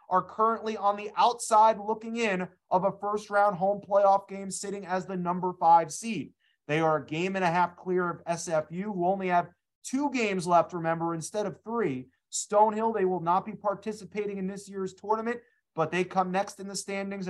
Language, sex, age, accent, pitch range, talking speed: English, male, 30-49, American, 175-215 Hz, 195 wpm